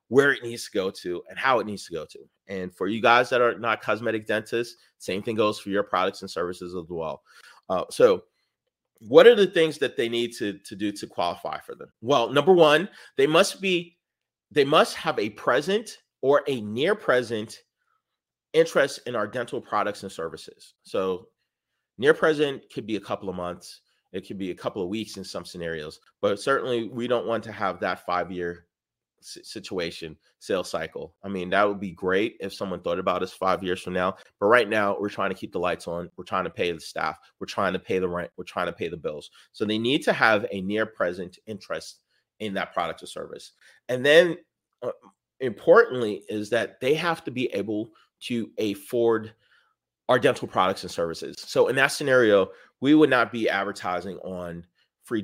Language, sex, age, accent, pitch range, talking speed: English, male, 30-49, American, 95-160 Hz, 200 wpm